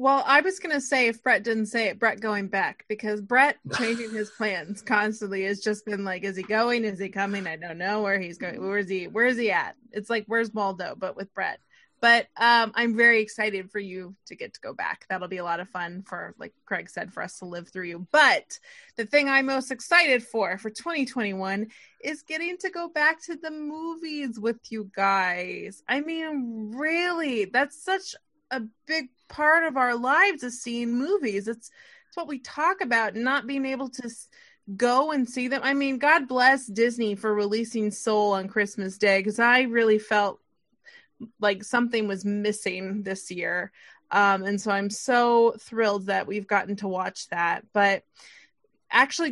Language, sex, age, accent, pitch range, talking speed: English, female, 20-39, American, 205-280 Hz, 195 wpm